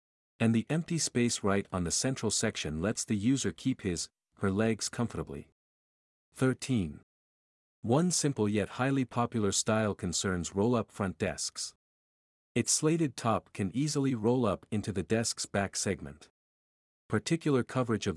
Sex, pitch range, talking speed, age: male, 85-125 Hz, 140 wpm, 50-69